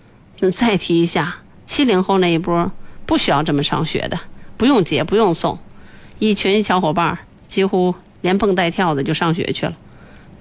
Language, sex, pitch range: Chinese, female, 155-195 Hz